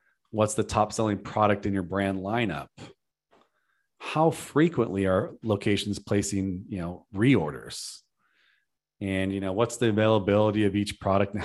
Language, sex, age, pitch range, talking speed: English, male, 30-49, 95-105 Hz, 135 wpm